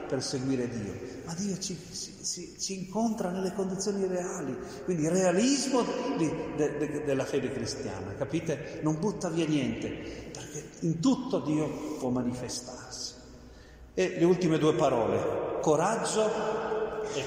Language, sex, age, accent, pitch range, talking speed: Italian, male, 50-69, native, 130-200 Hz, 120 wpm